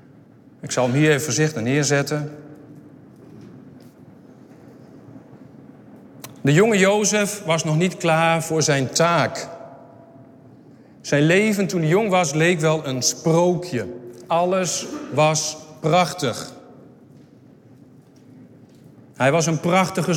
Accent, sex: Dutch, male